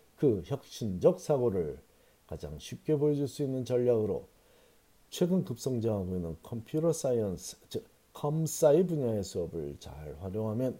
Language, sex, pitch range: Korean, male, 95-130 Hz